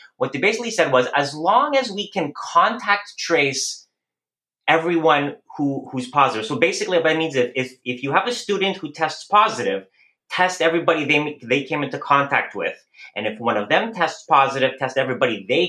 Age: 30-49